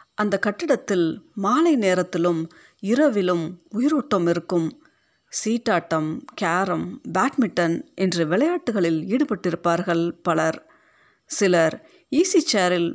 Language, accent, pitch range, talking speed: Tamil, native, 170-235 Hz, 80 wpm